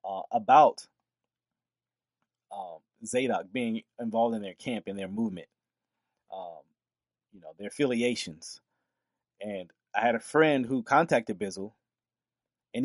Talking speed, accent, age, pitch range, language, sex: 120 wpm, American, 30-49, 110-150 Hz, English, male